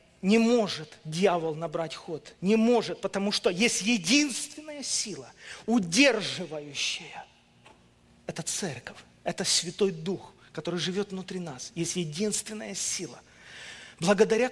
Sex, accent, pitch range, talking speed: male, native, 180-230 Hz, 110 wpm